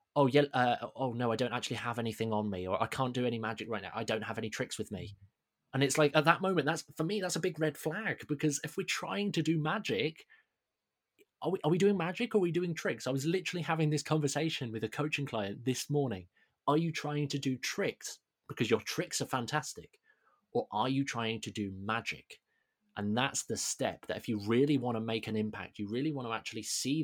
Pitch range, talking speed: 110-150 Hz, 240 wpm